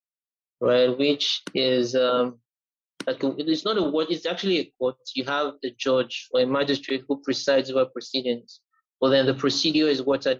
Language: English